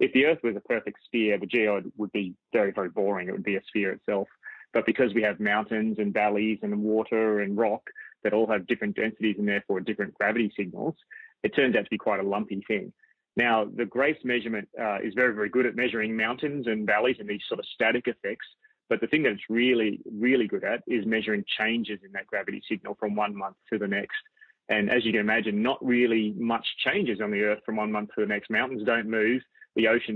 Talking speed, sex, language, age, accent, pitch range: 230 wpm, male, English, 30-49, Australian, 105-125 Hz